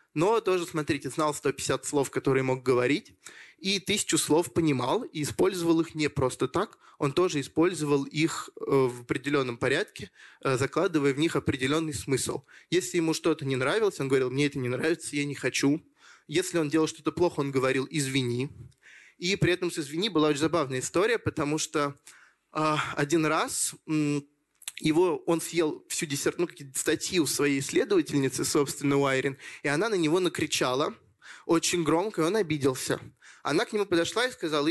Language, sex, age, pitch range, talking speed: Russian, male, 20-39, 140-165 Hz, 160 wpm